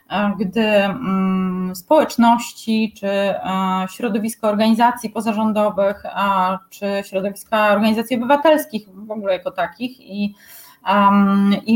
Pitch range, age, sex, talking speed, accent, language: 210-260 Hz, 20-39, female, 80 wpm, native, Polish